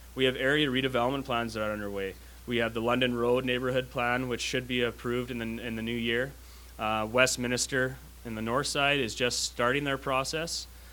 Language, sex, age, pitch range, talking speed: English, male, 20-39, 115-135 Hz, 190 wpm